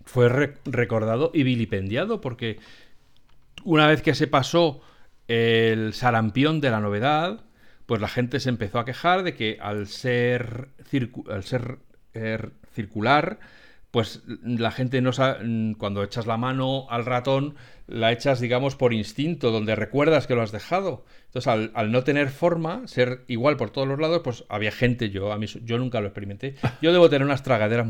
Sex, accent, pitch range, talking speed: male, Spanish, 110-135 Hz, 175 wpm